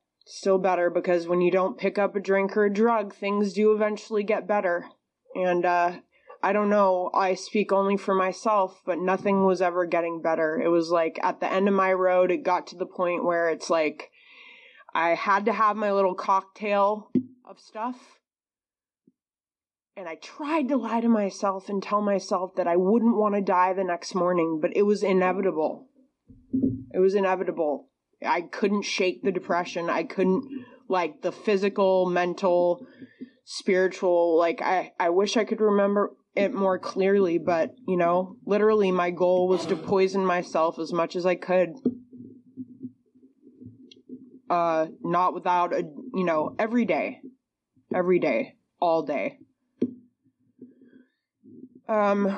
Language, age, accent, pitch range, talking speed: English, 20-39, American, 180-235 Hz, 155 wpm